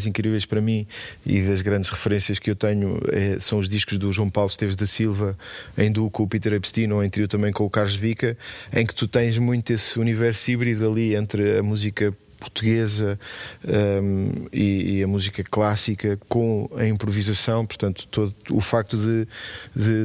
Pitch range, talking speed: 100-115 Hz, 175 wpm